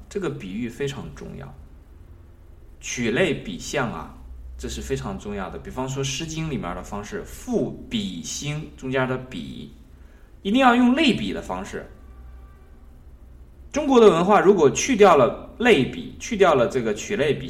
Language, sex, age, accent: Chinese, male, 20-39, native